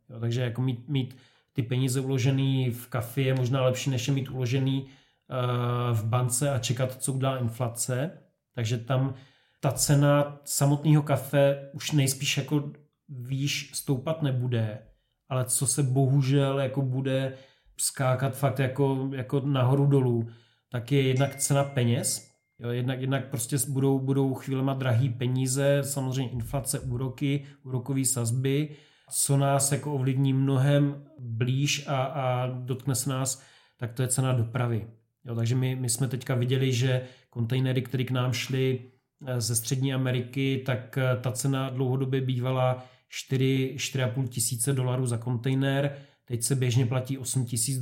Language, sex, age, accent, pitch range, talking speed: Czech, male, 30-49, native, 125-135 Hz, 145 wpm